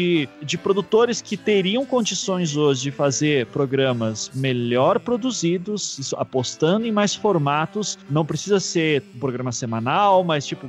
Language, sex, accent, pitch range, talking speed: Portuguese, male, Brazilian, 145-190 Hz, 135 wpm